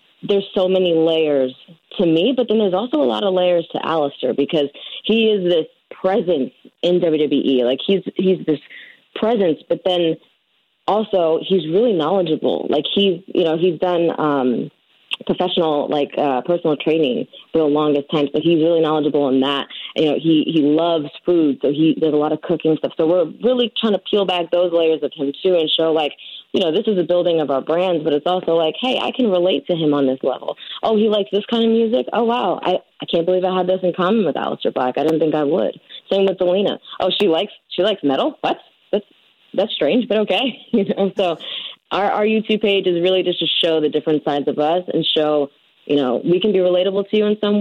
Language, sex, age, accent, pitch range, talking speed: English, female, 20-39, American, 155-195 Hz, 225 wpm